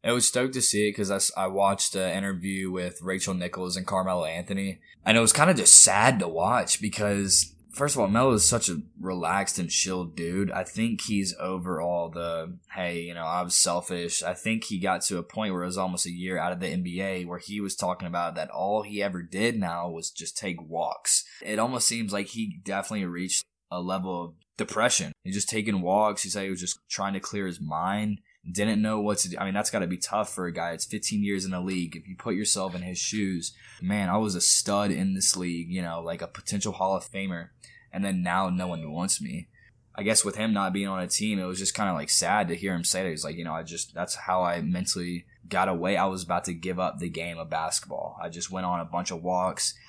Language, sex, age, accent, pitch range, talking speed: English, male, 20-39, American, 90-105 Hz, 255 wpm